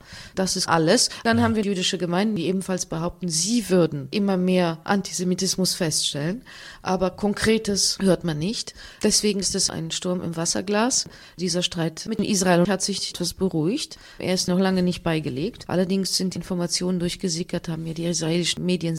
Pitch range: 170-195 Hz